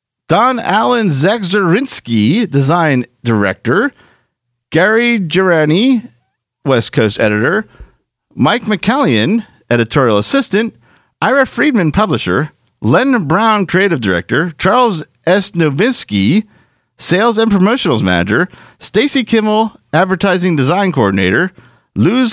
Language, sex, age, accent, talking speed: English, male, 50-69, American, 90 wpm